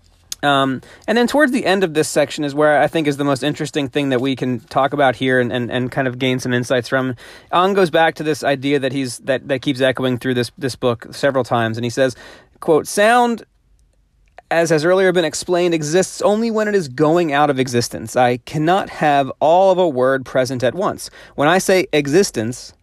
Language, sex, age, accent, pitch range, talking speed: English, male, 30-49, American, 125-160 Hz, 220 wpm